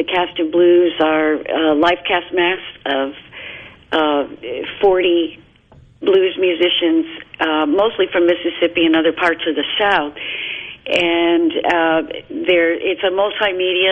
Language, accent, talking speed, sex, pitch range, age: English, American, 130 wpm, female, 160-185 Hz, 50-69